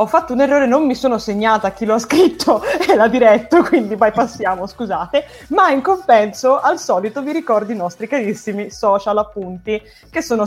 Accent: native